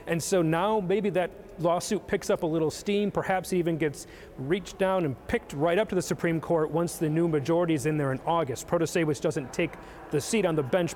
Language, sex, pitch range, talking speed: English, male, 155-180 Hz, 230 wpm